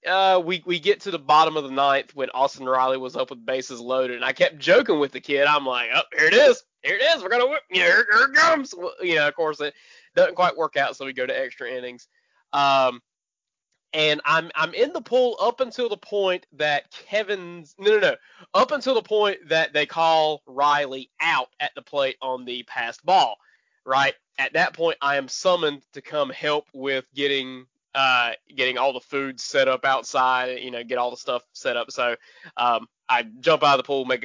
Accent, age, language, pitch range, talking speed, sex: American, 20-39, English, 135-205 Hz, 220 wpm, male